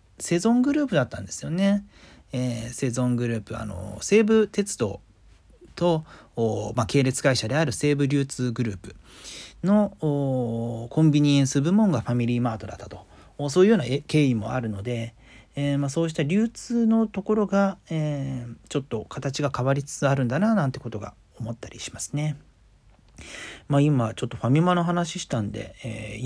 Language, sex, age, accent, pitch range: Japanese, male, 40-59, native, 115-180 Hz